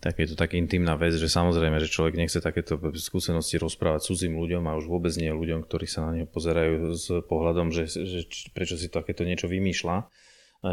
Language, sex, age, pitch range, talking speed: Slovak, male, 30-49, 85-95 Hz, 200 wpm